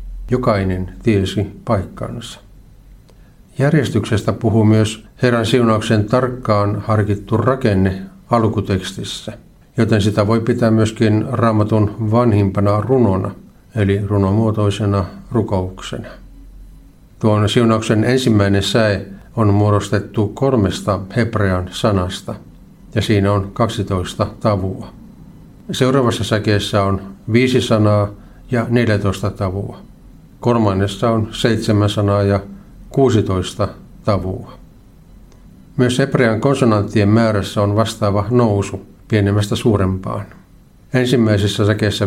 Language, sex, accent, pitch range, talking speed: Finnish, male, native, 100-115 Hz, 90 wpm